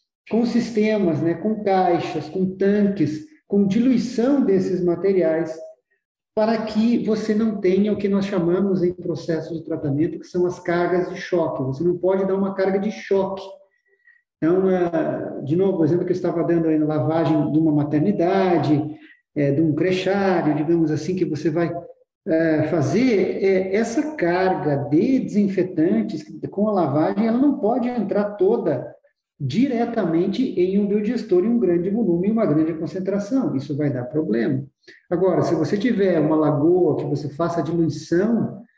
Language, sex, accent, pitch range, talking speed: Portuguese, male, Brazilian, 160-215 Hz, 155 wpm